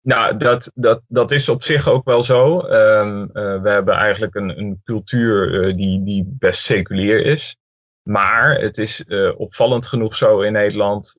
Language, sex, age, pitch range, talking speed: Dutch, male, 20-39, 95-110 Hz, 175 wpm